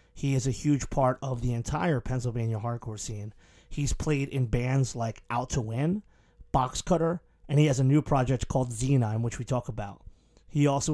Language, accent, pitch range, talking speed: English, American, 120-140 Hz, 190 wpm